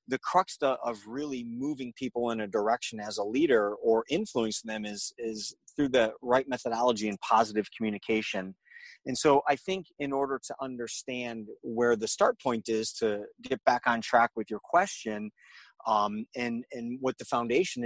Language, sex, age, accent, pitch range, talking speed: English, male, 30-49, American, 110-135 Hz, 170 wpm